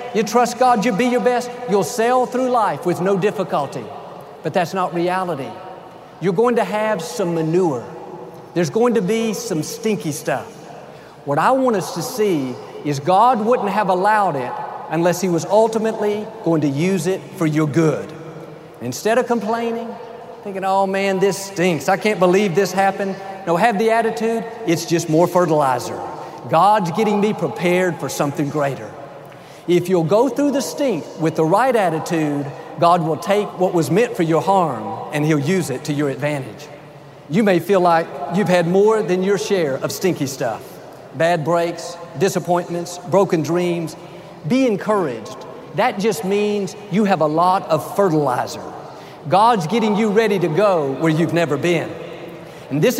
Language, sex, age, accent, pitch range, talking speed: English, male, 50-69, American, 165-220 Hz, 170 wpm